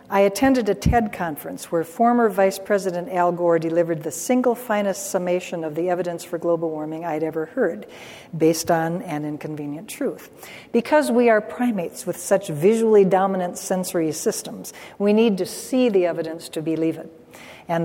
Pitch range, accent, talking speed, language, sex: 170-215 Hz, American, 170 wpm, English, female